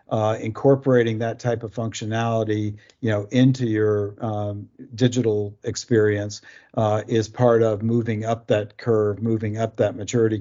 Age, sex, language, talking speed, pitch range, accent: 50-69, male, English, 145 wpm, 105-120 Hz, American